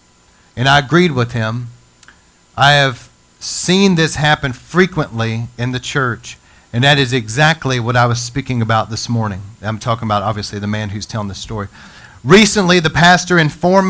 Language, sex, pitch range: English, male, 120-165 Hz